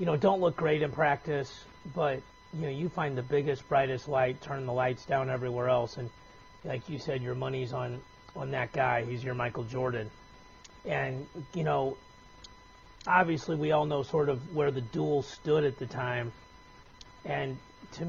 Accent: American